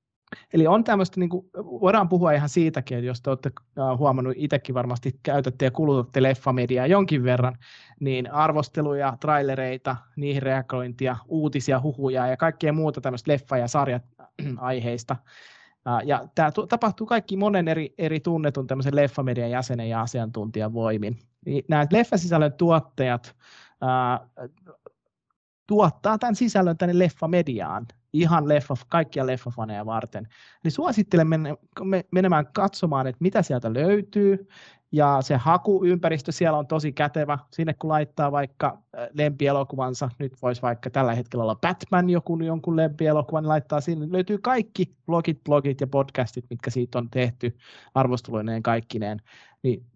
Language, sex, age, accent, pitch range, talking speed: Finnish, male, 30-49, native, 125-165 Hz, 130 wpm